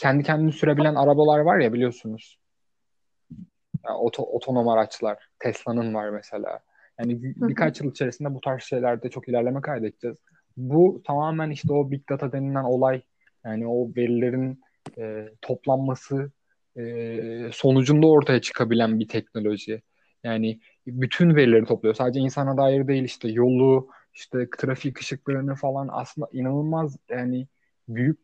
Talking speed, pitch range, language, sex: 130 wpm, 120-145 Hz, Turkish, male